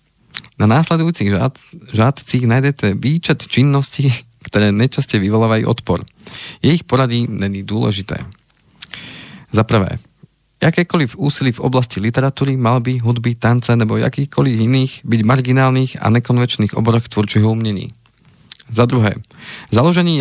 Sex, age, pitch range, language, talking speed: male, 40-59, 110-135 Hz, Slovak, 115 wpm